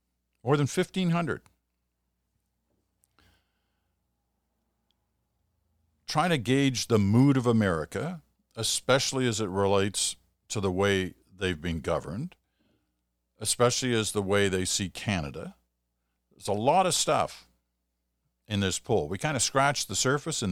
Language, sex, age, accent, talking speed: English, male, 50-69, American, 125 wpm